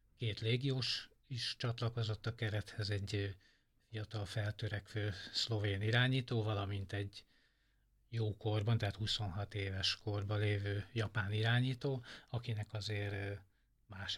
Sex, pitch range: male, 105-120 Hz